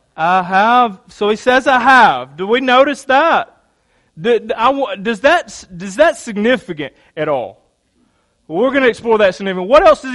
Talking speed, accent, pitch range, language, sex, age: 160 wpm, American, 180-255 Hz, English, male, 30-49